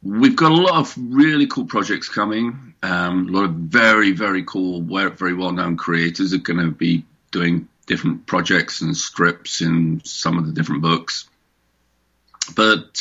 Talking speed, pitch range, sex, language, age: 160 wpm, 85-105 Hz, male, English, 40-59